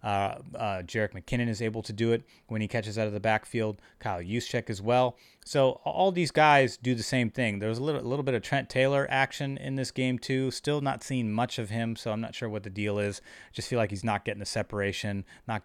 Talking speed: 250 wpm